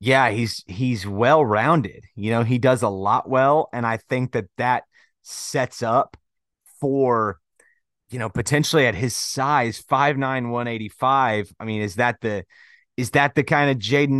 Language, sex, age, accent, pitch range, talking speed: English, male, 30-49, American, 110-140 Hz, 160 wpm